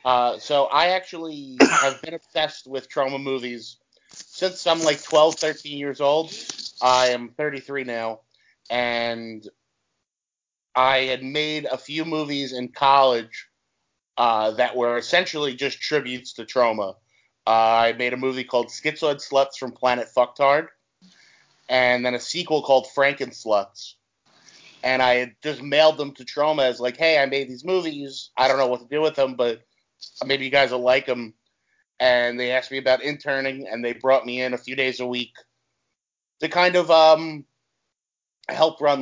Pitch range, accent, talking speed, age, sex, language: 125-150 Hz, American, 165 wpm, 30-49, male, English